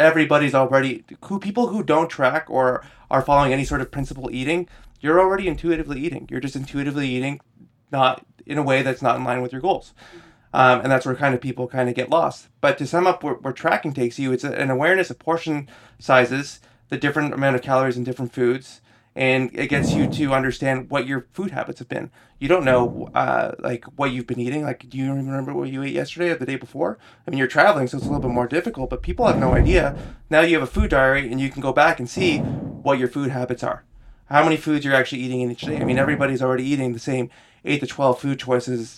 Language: English